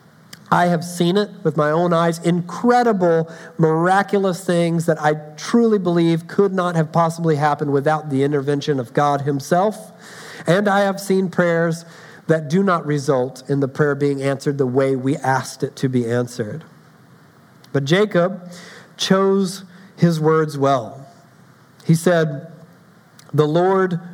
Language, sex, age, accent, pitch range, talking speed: English, male, 50-69, American, 150-195 Hz, 145 wpm